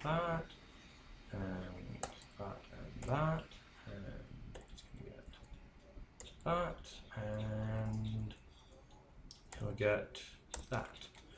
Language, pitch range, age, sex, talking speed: English, 105-130 Hz, 20-39, male, 60 wpm